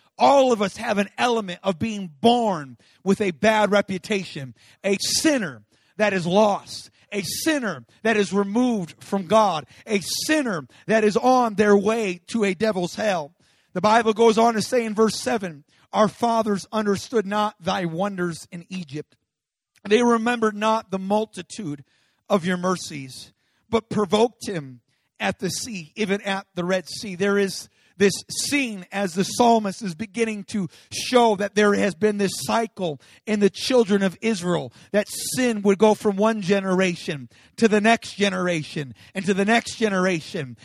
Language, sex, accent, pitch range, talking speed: English, male, American, 180-225 Hz, 160 wpm